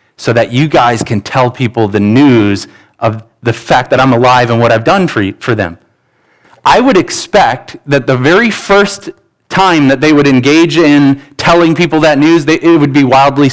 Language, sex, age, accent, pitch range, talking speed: English, male, 30-49, American, 130-190 Hz, 200 wpm